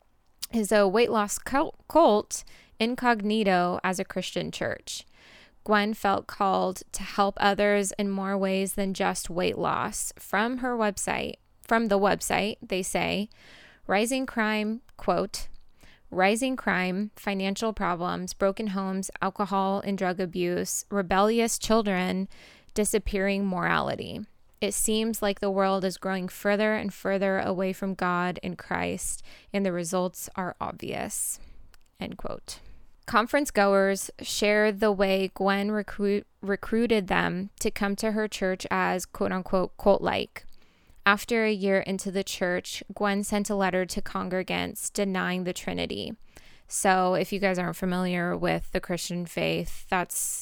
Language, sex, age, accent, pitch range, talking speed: English, female, 20-39, American, 185-210 Hz, 135 wpm